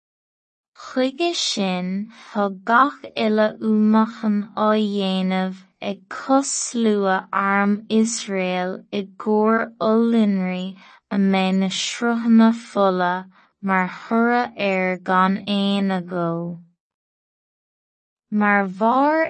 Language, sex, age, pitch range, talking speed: English, female, 20-39, 195-230 Hz, 75 wpm